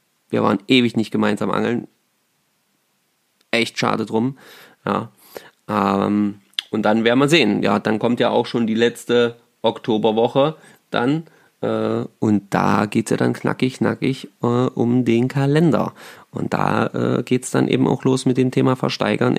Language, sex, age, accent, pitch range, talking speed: German, male, 30-49, German, 105-130 Hz, 160 wpm